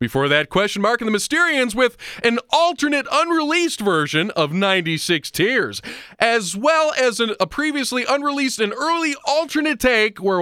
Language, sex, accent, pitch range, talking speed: English, male, American, 175-285 Hz, 150 wpm